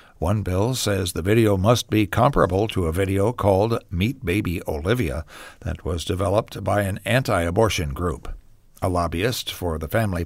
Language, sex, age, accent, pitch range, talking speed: English, male, 60-79, American, 90-120 Hz, 160 wpm